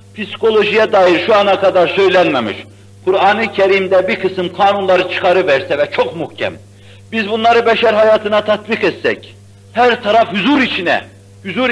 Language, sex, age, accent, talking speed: Turkish, male, 60-79, native, 135 wpm